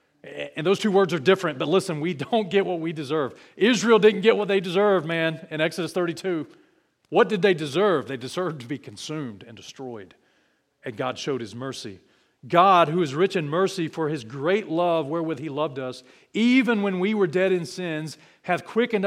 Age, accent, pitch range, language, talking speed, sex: 40-59, American, 170-230 Hz, English, 200 wpm, male